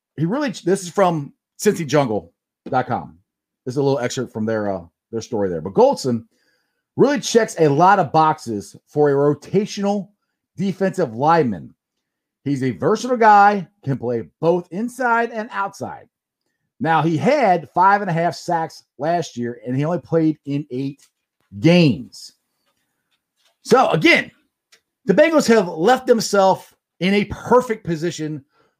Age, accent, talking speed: 40-59, American, 140 wpm